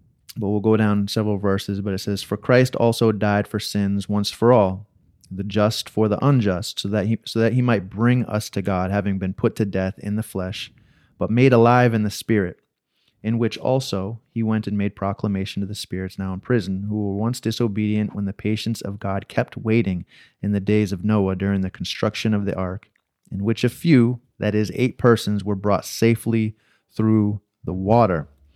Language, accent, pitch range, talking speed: English, American, 95-115 Hz, 205 wpm